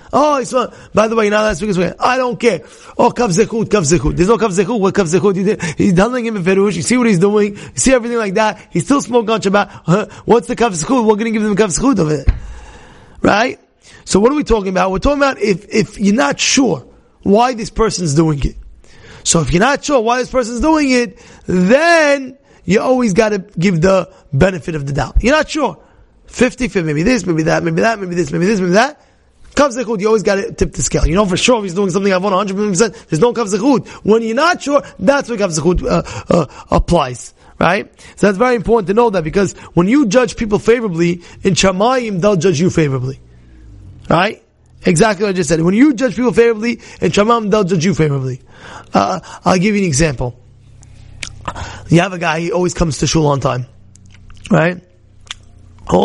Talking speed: 210 wpm